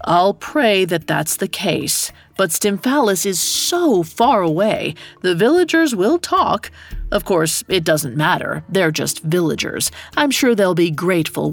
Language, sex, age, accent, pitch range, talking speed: English, female, 40-59, American, 160-230 Hz, 150 wpm